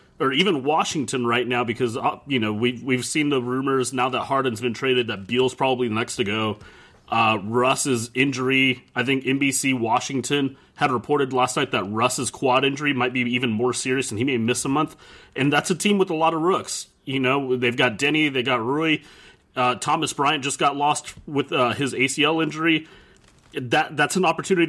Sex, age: male, 30-49